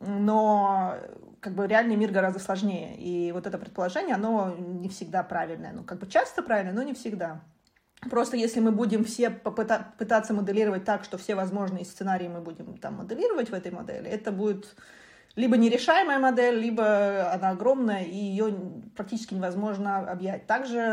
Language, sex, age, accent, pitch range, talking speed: Russian, female, 20-39, native, 190-225 Hz, 165 wpm